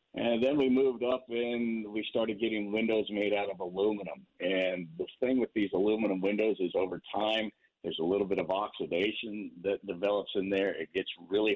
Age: 50-69